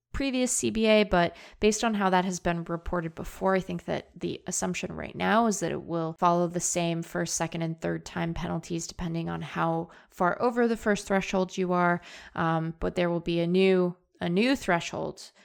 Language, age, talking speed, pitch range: English, 20-39, 200 wpm, 165-200 Hz